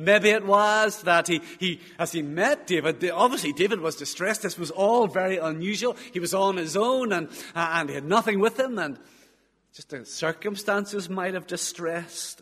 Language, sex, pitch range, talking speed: English, male, 150-210 Hz, 190 wpm